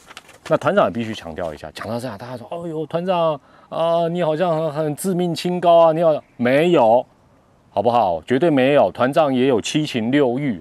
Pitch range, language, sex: 110-155 Hz, Chinese, male